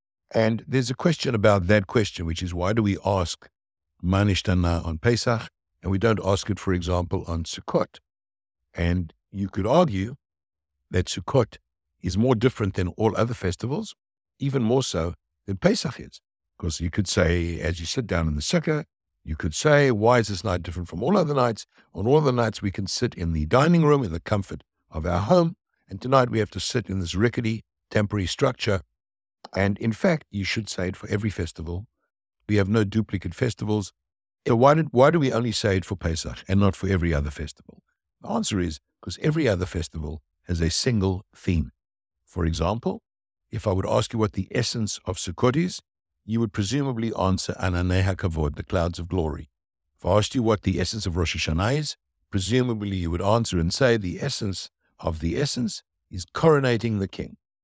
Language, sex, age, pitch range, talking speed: English, male, 60-79, 85-115 Hz, 195 wpm